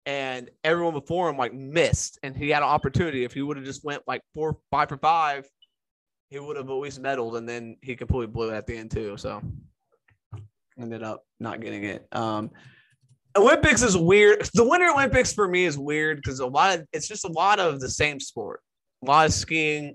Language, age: English, 20-39